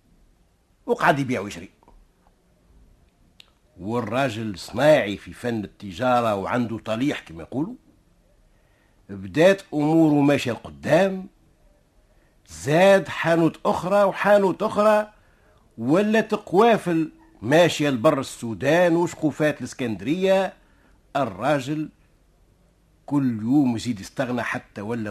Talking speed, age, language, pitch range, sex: 85 wpm, 60-79, Arabic, 105-155 Hz, male